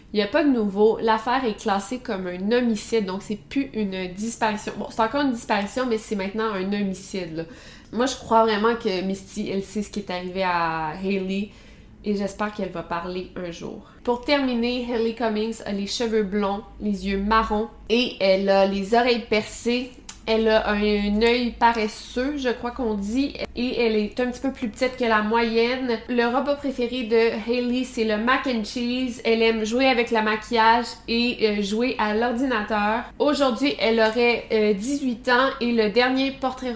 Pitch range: 200-240 Hz